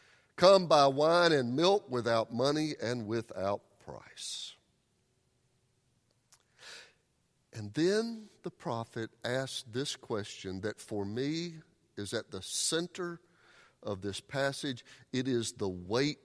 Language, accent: English, American